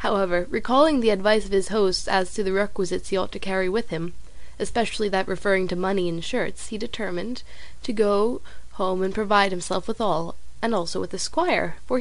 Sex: female